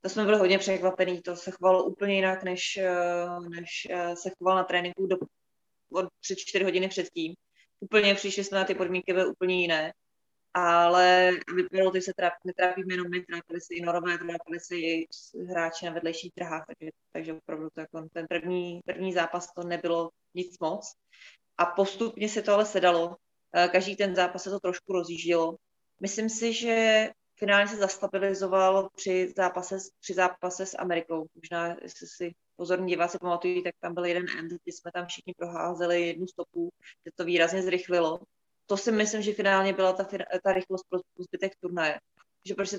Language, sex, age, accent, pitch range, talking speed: Czech, female, 20-39, native, 175-195 Hz, 170 wpm